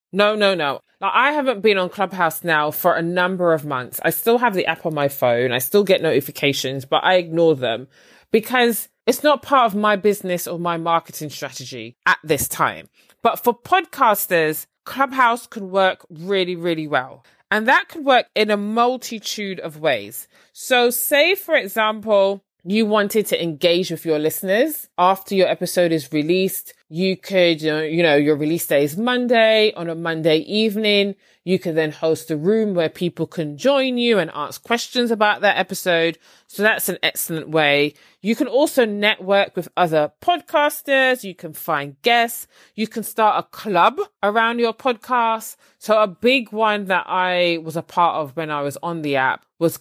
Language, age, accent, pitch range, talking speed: English, 20-39, British, 165-225 Hz, 180 wpm